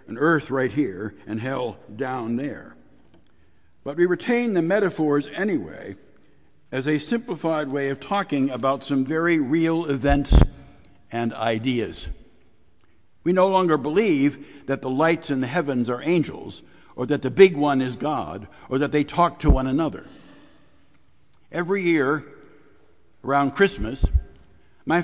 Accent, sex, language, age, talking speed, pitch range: American, male, English, 60-79, 140 wpm, 130-170 Hz